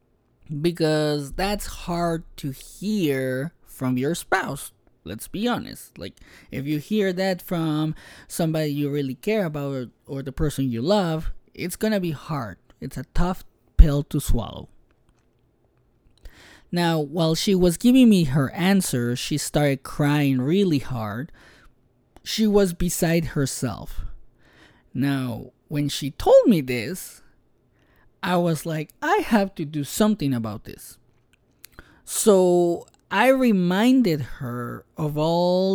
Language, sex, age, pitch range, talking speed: English, male, 20-39, 135-185 Hz, 130 wpm